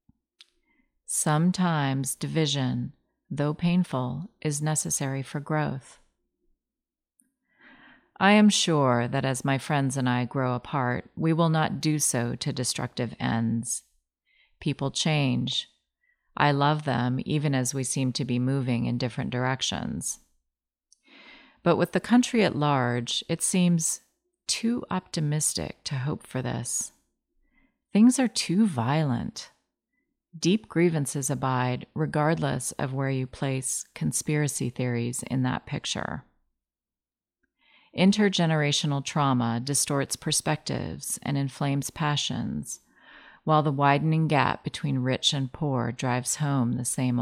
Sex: female